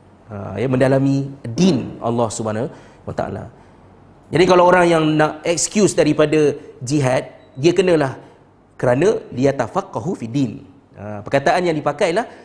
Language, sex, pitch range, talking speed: Malay, male, 120-190 Hz, 120 wpm